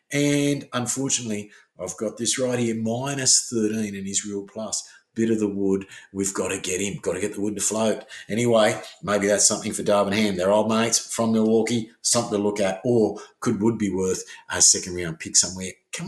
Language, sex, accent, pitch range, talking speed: English, male, Australian, 100-135 Hz, 210 wpm